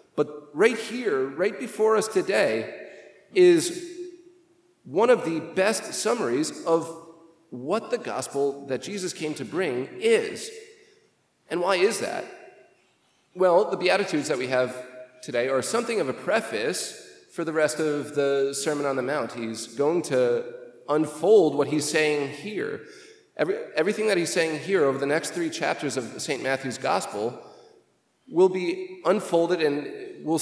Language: English